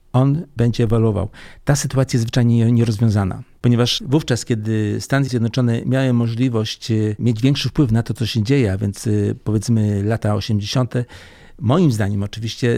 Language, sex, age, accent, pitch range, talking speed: Polish, male, 50-69, native, 110-125 Hz, 145 wpm